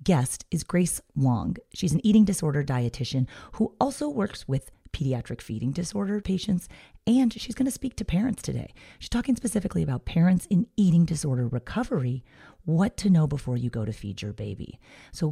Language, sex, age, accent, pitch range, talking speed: English, female, 30-49, American, 130-195 Hz, 175 wpm